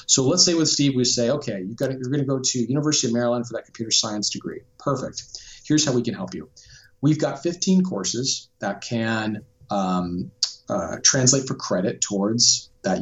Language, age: English, 40-59